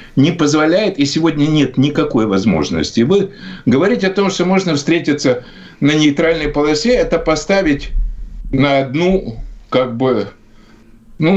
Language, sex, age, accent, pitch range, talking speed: Russian, male, 60-79, native, 140-190 Hz, 125 wpm